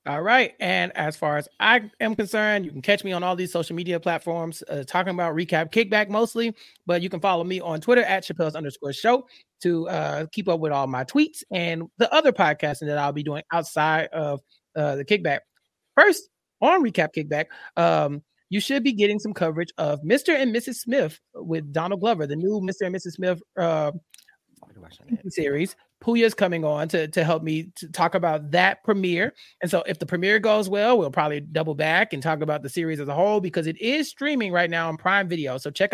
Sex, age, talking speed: male, 30-49, 210 wpm